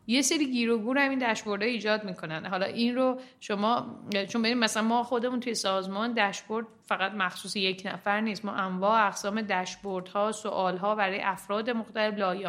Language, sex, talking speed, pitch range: Persian, female, 170 wpm, 200-235 Hz